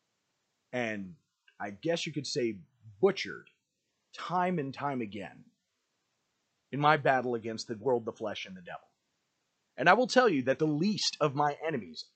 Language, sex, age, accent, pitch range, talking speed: English, male, 30-49, American, 120-170 Hz, 165 wpm